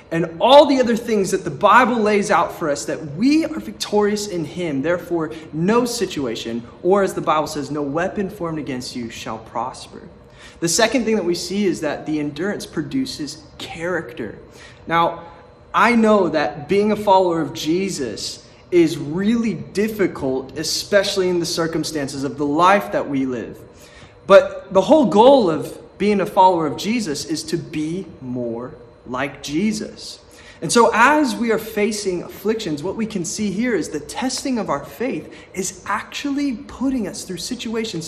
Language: English